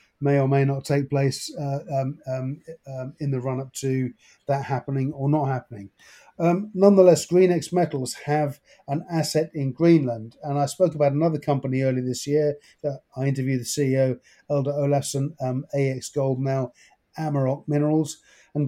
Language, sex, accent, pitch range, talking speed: English, male, British, 135-155 Hz, 160 wpm